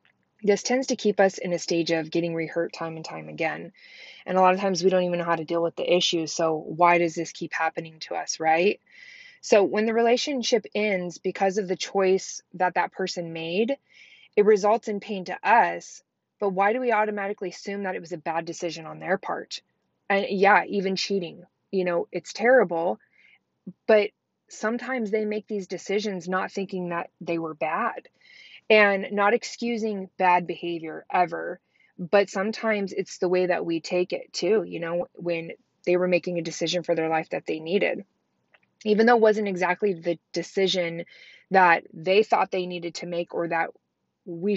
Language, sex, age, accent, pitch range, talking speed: English, female, 20-39, American, 170-210 Hz, 190 wpm